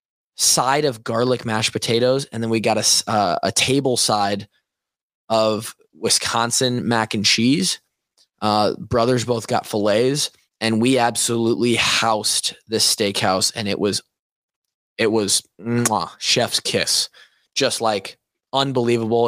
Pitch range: 105-125 Hz